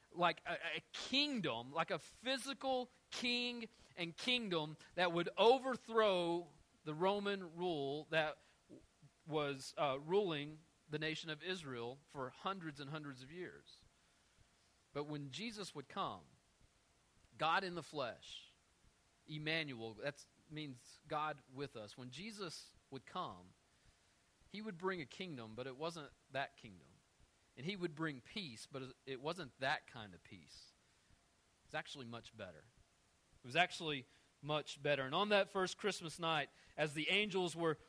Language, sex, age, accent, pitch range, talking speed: English, male, 40-59, American, 145-195 Hz, 145 wpm